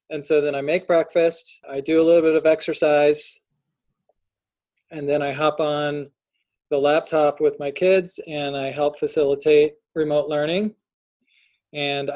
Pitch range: 145-165 Hz